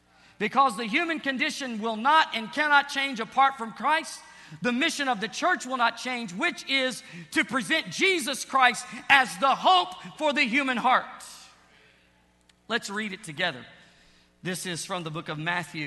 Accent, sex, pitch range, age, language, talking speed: American, male, 170-250 Hz, 50-69, English, 165 wpm